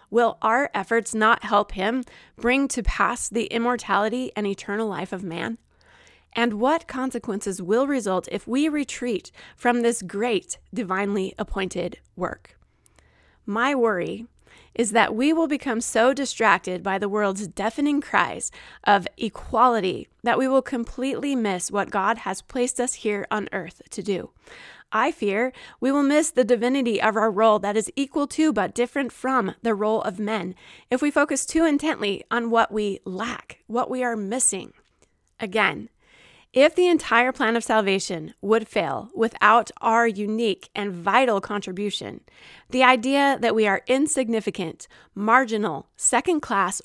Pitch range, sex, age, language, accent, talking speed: 205-255 Hz, female, 20-39, English, American, 150 wpm